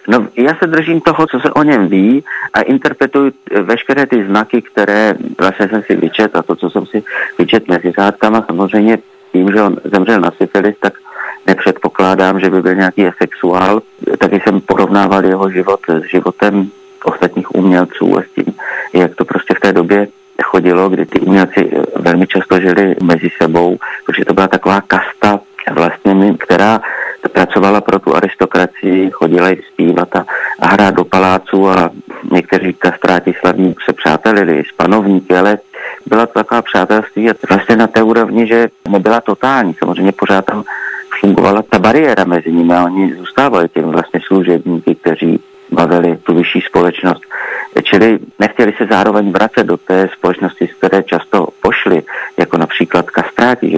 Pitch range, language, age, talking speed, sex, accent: 90-105 Hz, Czech, 40-59, 155 wpm, male, native